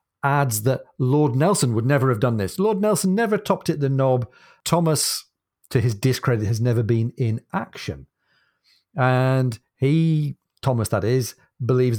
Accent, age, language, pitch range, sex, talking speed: British, 40-59, English, 110-140 Hz, male, 155 wpm